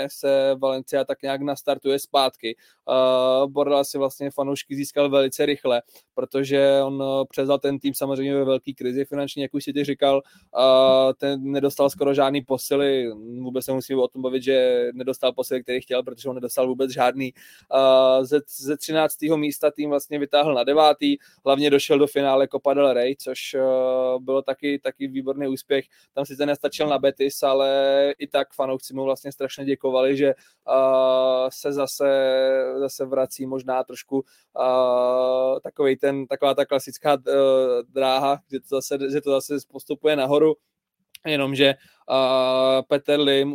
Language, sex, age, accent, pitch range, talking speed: Czech, male, 20-39, native, 130-140 Hz, 160 wpm